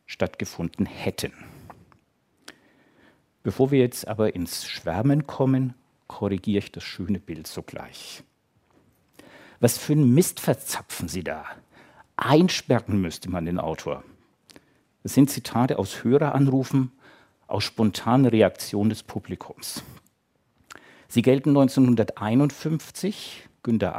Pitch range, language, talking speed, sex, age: 105-140 Hz, German, 105 wpm, male, 60-79